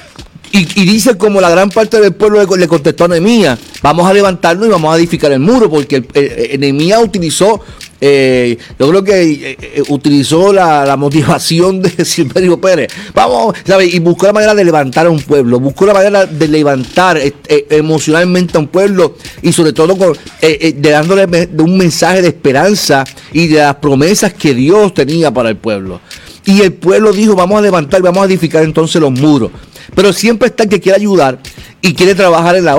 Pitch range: 145-190 Hz